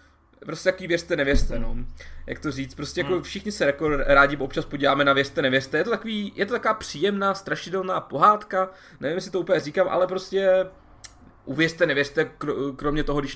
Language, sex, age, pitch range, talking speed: Czech, male, 20-39, 140-180 Hz, 185 wpm